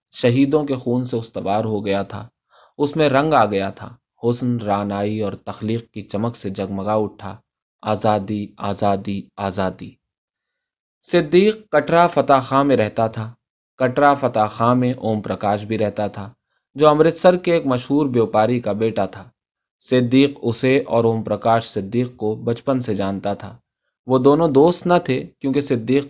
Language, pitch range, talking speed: Urdu, 105-135 Hz, 160 wpm